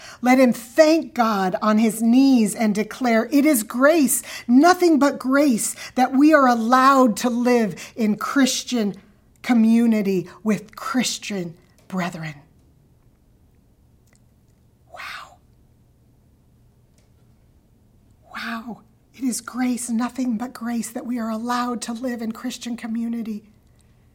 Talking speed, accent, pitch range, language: 110 wpm, American, 195-255 Hz, English